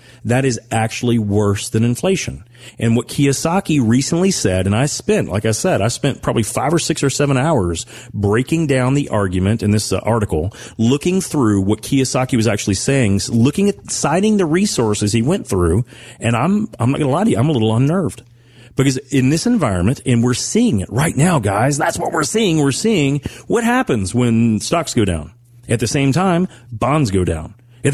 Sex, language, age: male, English, 40-59